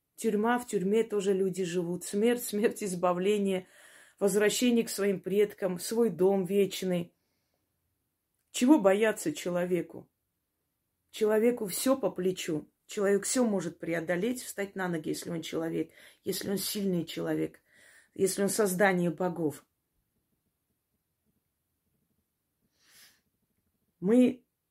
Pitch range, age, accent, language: 170-210 Hz, 20-39, native, Russian